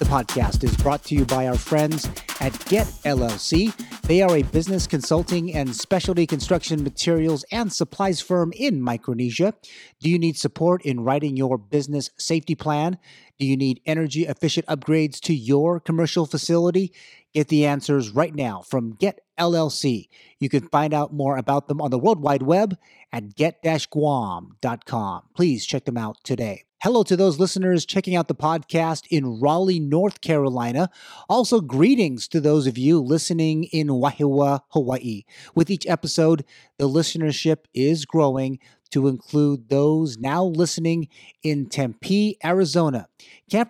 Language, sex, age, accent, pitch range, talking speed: English, male, 30-49, American, 140-175 Hz, 150 wpm